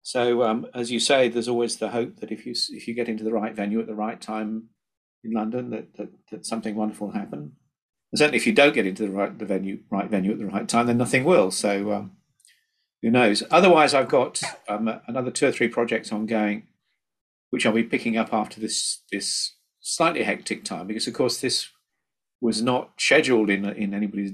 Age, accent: 50-69, British